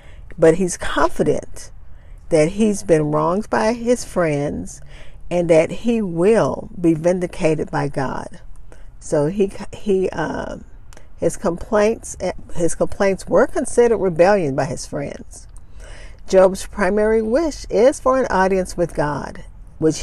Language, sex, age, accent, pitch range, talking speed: English, female, 50-69, American, 150-200 Hz, 125 wpm